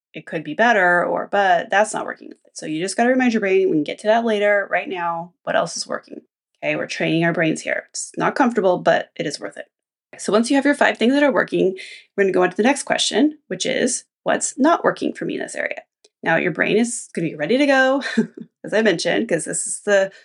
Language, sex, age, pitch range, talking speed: English, female, 20-39, 185-240 Hz, 265 wpm